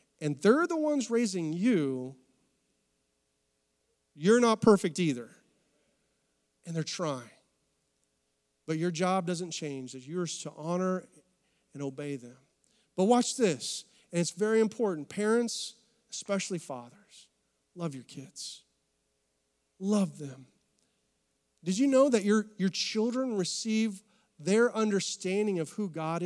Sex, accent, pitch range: male, American, 145-205 Hz